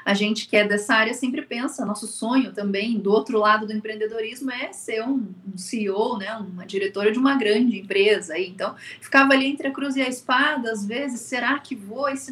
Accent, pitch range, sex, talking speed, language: Brazilian, 205-250 Hz, female, 210 wpm, Portuguese